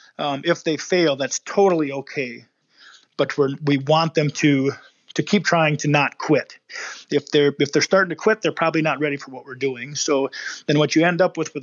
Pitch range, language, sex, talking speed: 135-160 Hz, English, male, 210 wpm